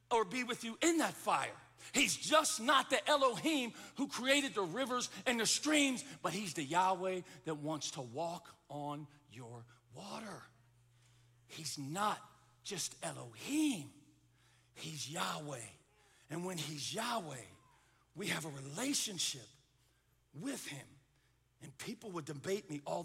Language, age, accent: English, 50-69, American